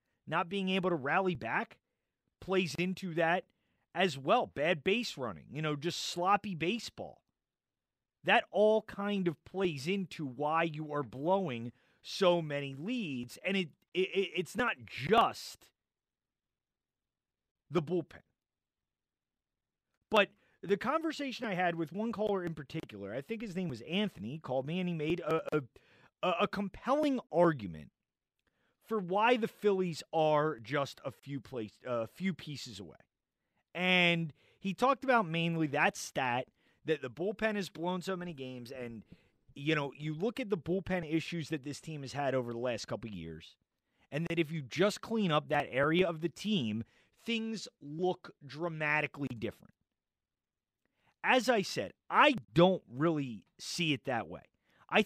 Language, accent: English, American